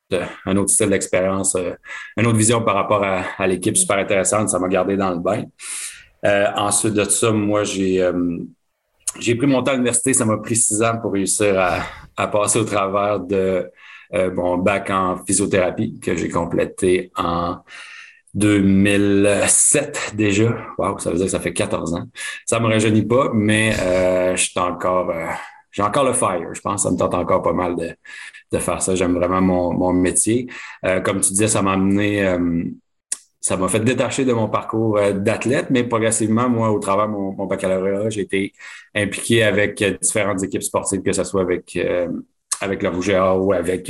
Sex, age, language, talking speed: male, 30-49, French, 195 wpm